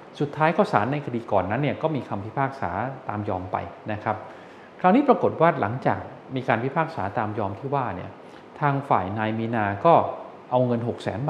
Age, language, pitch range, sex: 20-39, Thai, 105-145 Hz, male